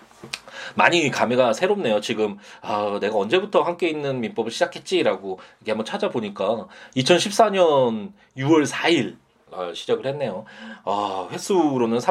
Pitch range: 115-180 Hz